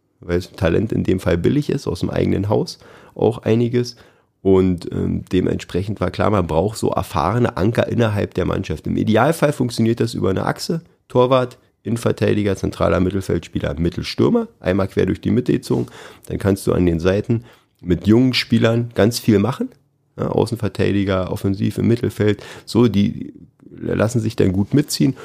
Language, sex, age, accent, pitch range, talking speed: German, male, 30-49, German, 90-115 Hz, 160 wpm